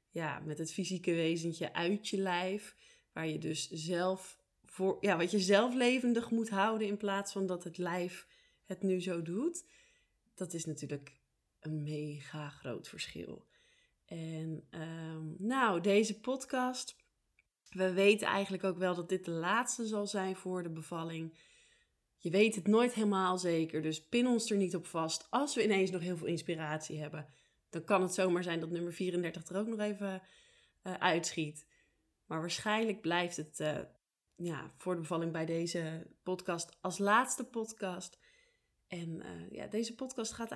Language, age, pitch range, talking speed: Dutch, 20-39, 170-215 Hz, 165 wpm